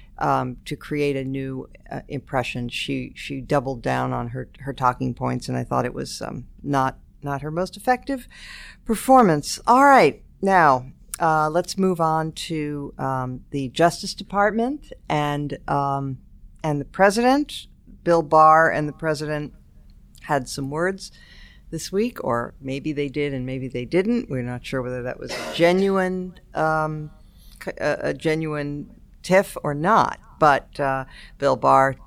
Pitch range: 130-175 Hz